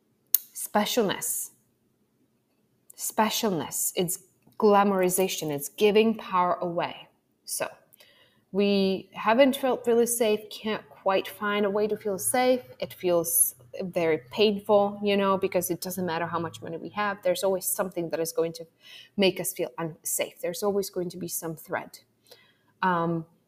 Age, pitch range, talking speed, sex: 20-39, 170-210 Hz, 145 wpm, female